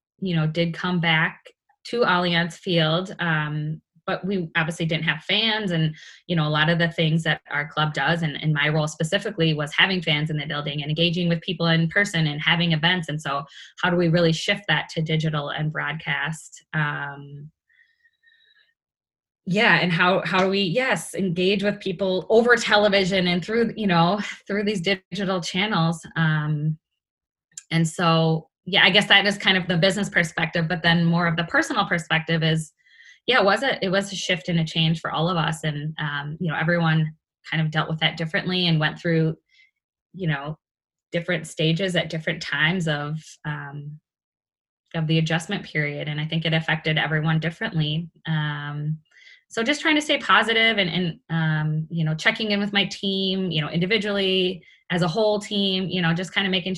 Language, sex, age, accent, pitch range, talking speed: English, female, 20-39, American, 155-190 Hz, 190 wpm